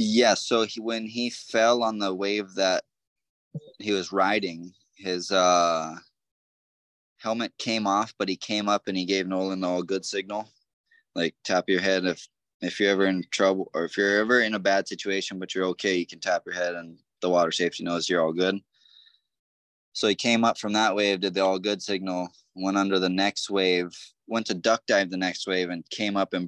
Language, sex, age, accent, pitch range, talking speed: English, male, 20-39, American, 90-100 Hz, 205 wpm